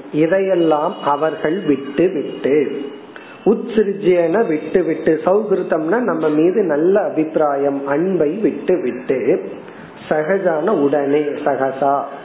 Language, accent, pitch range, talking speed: Tamil, native, 145-180 Hz, 75 wpm